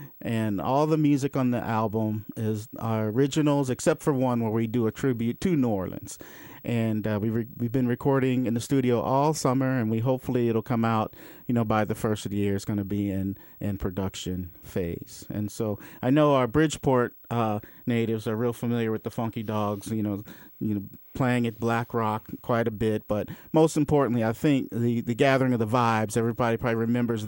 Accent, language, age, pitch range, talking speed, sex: American, English, 40-59, 110-125 Hz, 210 wpm, male